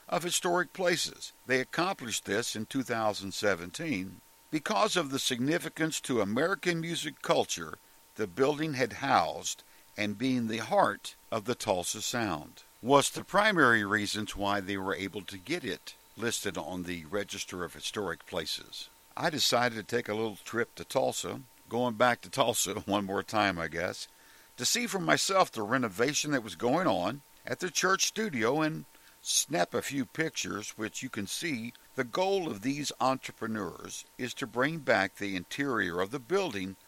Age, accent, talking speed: 60-79, American, 165 wpm